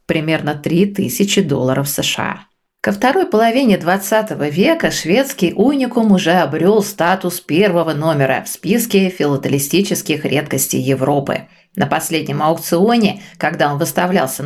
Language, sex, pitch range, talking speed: Russian, female, 150-200 Hz, 115 wpm